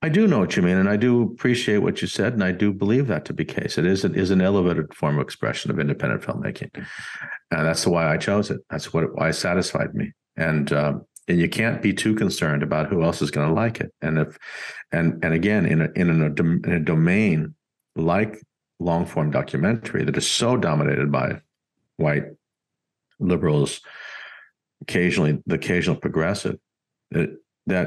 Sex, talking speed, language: male, 190 wpm, English